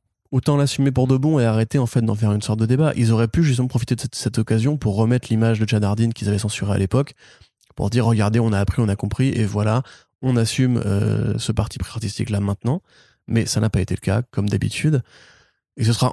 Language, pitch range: French, 105-125 Hz